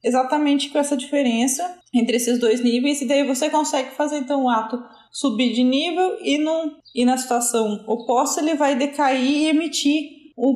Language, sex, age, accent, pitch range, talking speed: Portuguese, female, 20-39, Brazilian, 240-295 Hz, 170 wpm